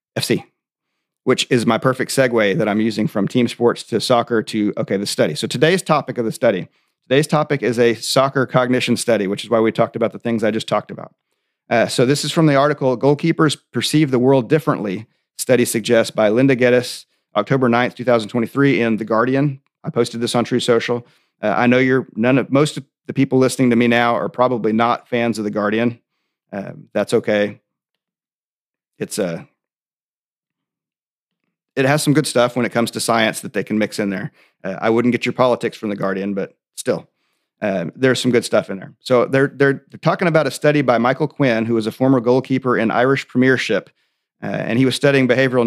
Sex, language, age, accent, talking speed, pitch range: male, English, 40-59, American, 205 wpm, 115-135 Hz